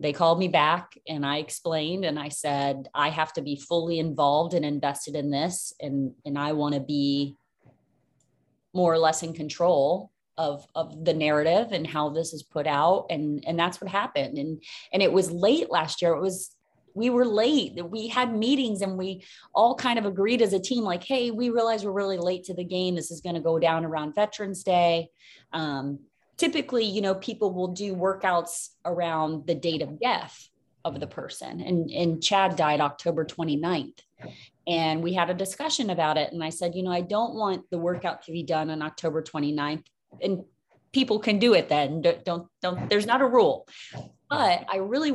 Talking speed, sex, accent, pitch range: 200 wpm, female, American, 155-200 Hz